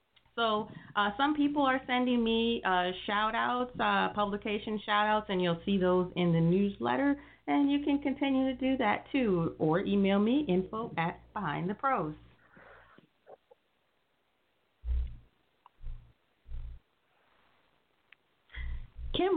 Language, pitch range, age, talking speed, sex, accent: English, 150-210 Hz, 40-59, 110 wpm, female, American